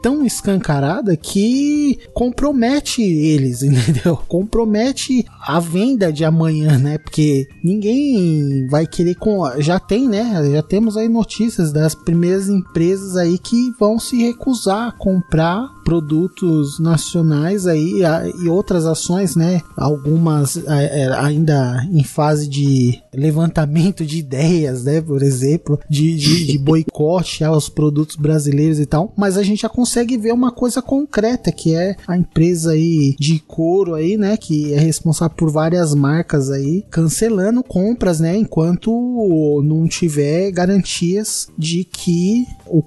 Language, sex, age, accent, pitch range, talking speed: Portuguese, male, 20-39, Brazilian, 155-205 Hz, 135 wpm